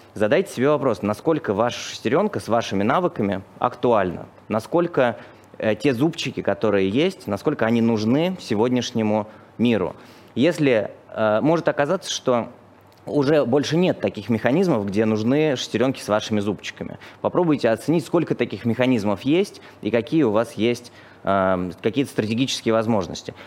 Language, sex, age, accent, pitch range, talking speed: Russian, male, 20-39, native, 105-135 Hz, 135 wpm